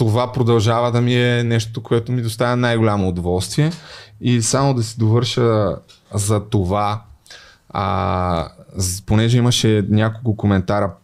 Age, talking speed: 20-39, 125 wpm